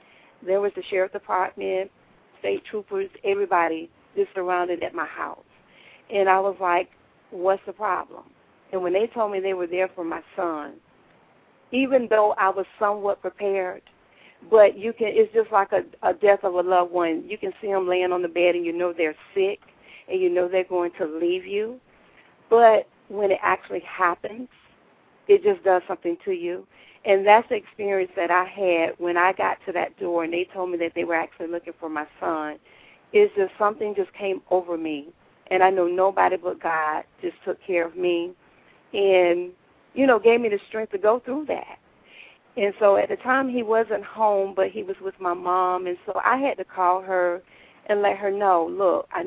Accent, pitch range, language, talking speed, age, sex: American, 180-210 Hz, English, 200 wpm, 40-59, female